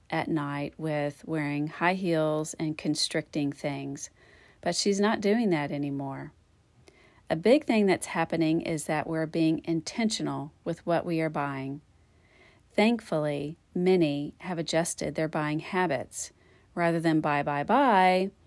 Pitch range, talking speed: 145-175 Hz, 135 wpm